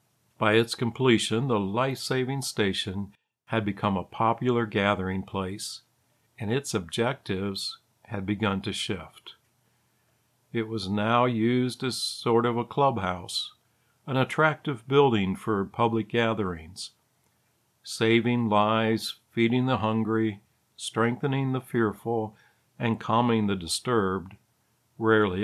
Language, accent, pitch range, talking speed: English, American, 100-120 Hz, 110 wpm